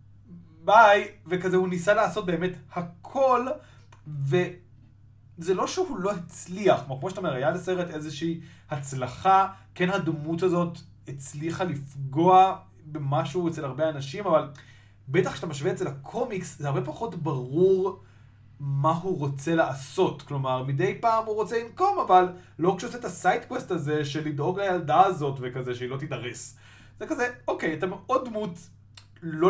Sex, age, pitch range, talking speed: male, 20-39, 135-185 Hz, 145 wpm